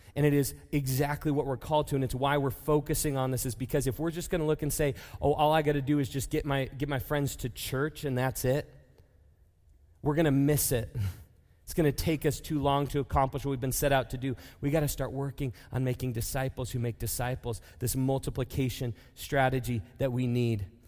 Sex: male